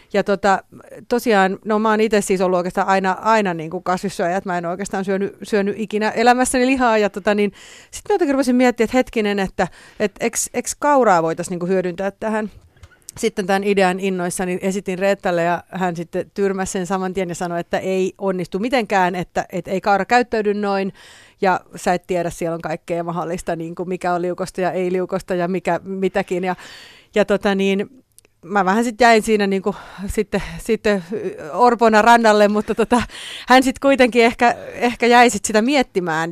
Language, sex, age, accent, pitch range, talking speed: Finnish, female, 30-49, native, 180-215 Hz, 180 wpm